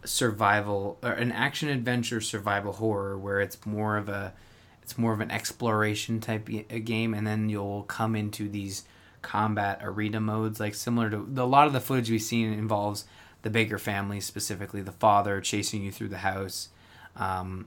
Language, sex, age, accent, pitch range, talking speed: English, male, 20-39, American, 100-120 Hz, 175 wpm